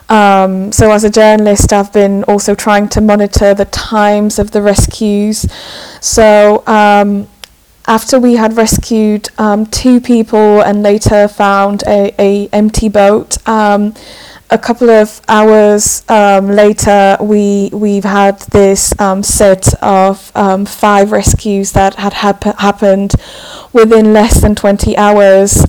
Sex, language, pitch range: female, English, 200-220 Hz